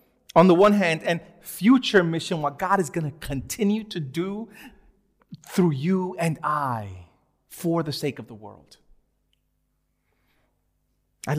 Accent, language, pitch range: American, English, 145-195 Hz